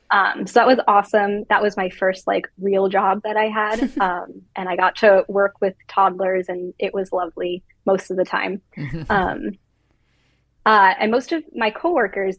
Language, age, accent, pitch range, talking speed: English, 10-29, American, 185-215 Hz, 185 wpm